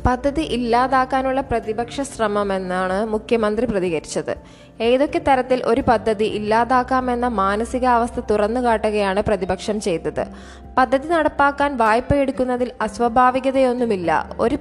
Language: Malayalam